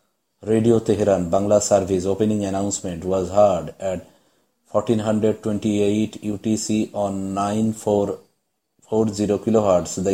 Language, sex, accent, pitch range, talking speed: English, male, Indian, 95-105 Hz, 130 wpm